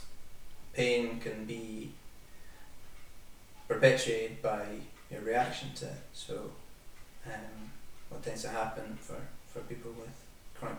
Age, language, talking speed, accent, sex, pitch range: 20-39, English, 110 wpm, British, male, 105-125 Hz